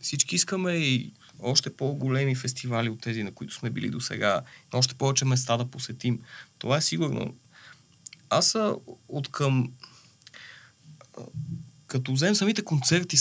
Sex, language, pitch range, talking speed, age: male, Bulgarian, 125-145 Hz, 130 wpm, 20-39